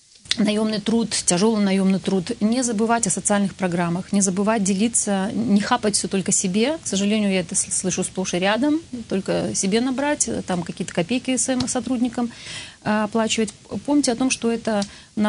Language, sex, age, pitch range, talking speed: Russian, female, 30-49, 190-225 Hz, 155 wpm